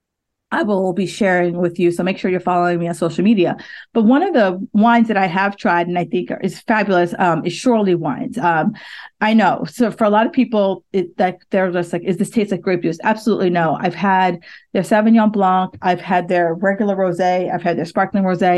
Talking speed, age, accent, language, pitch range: 225 wpm, 40-59, American, English, 180-215 Hz